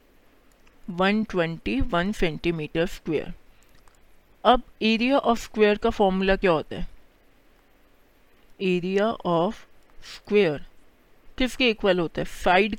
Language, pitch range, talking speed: Hindi, 185-225 Hz, 95 wpm